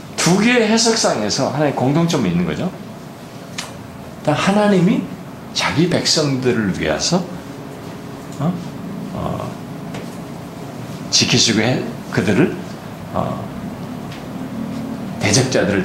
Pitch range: 130-205 Hz